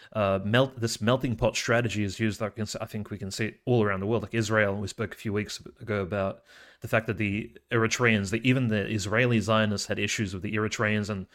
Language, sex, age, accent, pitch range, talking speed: English, male, 30-49, Australian, 105-115 Hz, 240 wpm